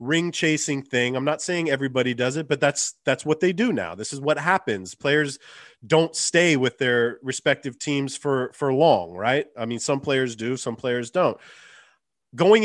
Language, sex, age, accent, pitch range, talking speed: English, male, 30-49, American, 120-155 Hz, 190 wpm